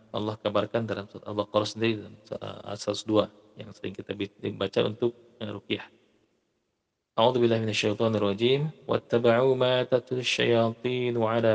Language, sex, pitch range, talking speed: Malay, male, 110-130 Hz, 130 wpm